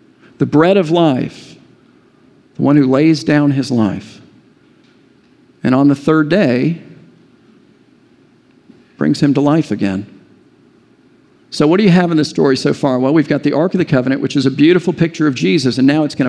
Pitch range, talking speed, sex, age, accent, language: 140-165 Hz, 185 wpm, male, 50-69, American, English